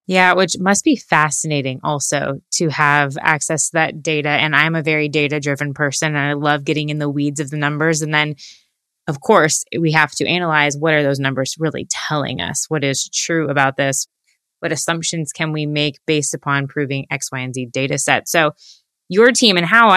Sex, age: female, 20-39